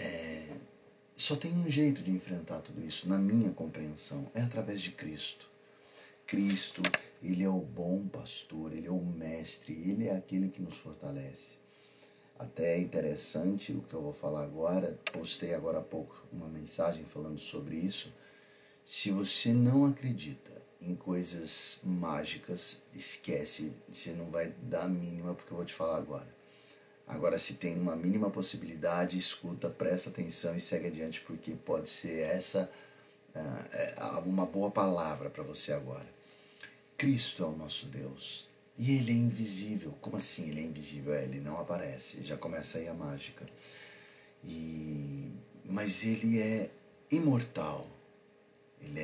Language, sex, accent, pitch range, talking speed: Portuguese, male, Brazilian, 80-100 Hz, 145 wpm